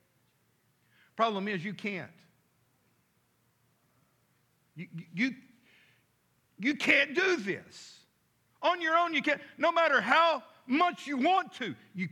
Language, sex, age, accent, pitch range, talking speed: English, male, 50-69, American, 185-250 Hz, 115 wpm